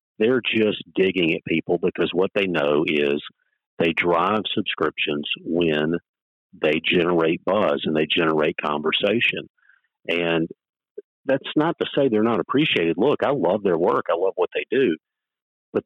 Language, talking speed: English, 150 wpm